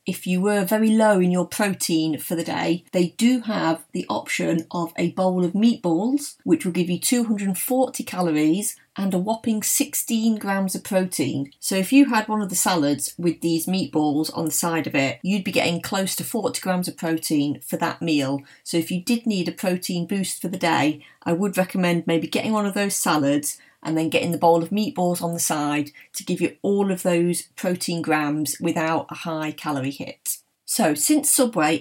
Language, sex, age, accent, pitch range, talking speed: English, female, 30-49, British, 165-220 Hz, 205 wpm